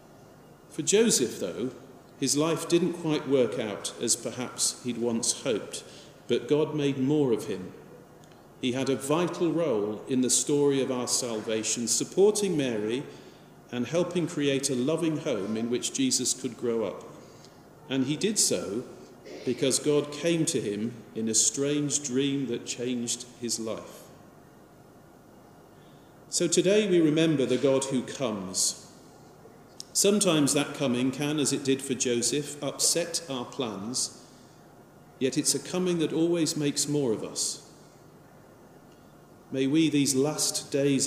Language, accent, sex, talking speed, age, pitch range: English, British, male, 140 wpm, 40-59, 120-150 Hz